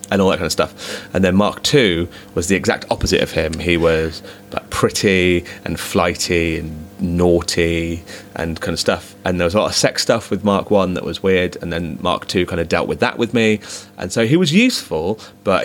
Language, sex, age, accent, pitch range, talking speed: English, male, 30-49, British, 90-110 Hz, 220 wpm